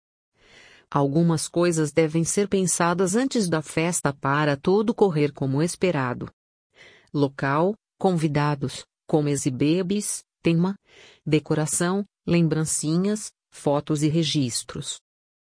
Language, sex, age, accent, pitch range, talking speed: Portuguese, female, 40-59, Brazilian, 145-180 Hz, 90 wpm